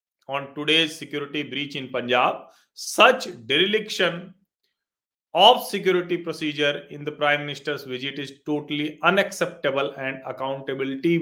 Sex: male